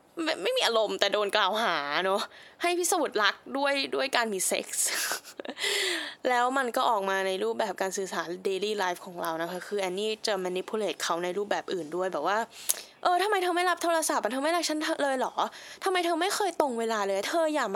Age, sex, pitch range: 10-29, female, 195-290 Hz